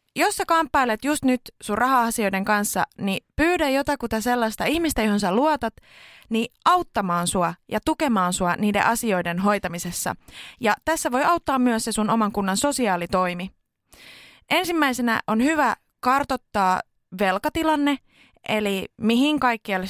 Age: 20-39